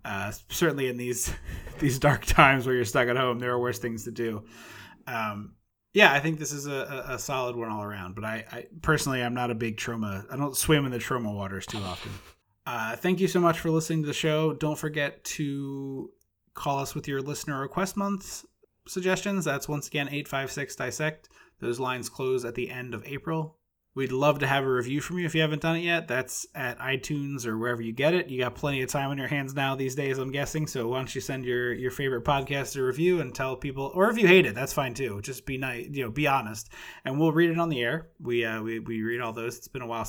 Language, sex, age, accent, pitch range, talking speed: English, male, 20-39, American, 120-150 Hz, 250 wpm